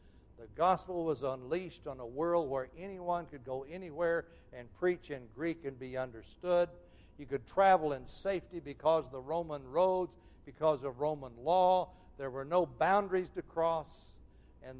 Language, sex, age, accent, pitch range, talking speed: English, male, 60-79, American, 95-155 Hz, 160 wpm